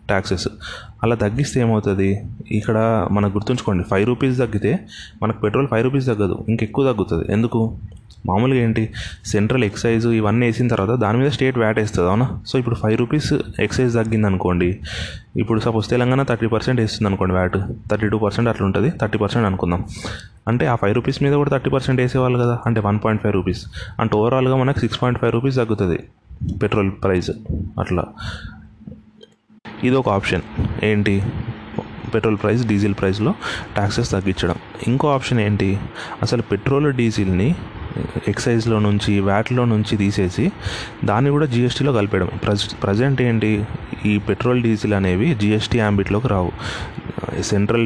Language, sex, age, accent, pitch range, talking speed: Telugu, male, 20-39, native, 100-120 Hz, 140 wpm